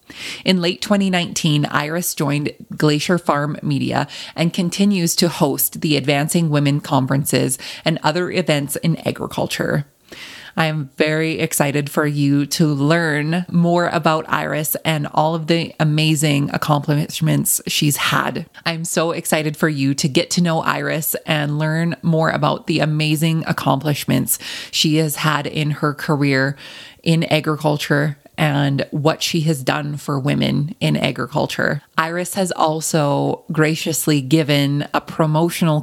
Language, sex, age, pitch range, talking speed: English, female, 20-39, 145-165 Hz, 135 wpm